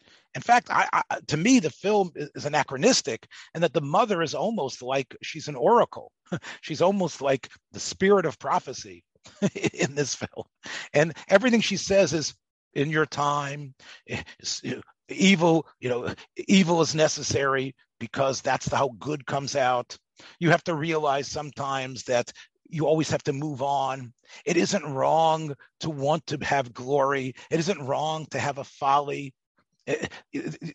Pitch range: 130-170 Hz